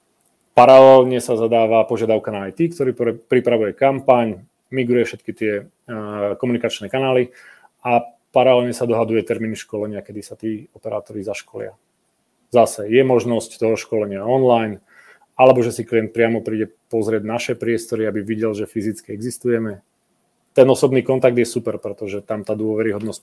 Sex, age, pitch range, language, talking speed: male, 30-49, 110-120 Hz, Czech, 140 wpm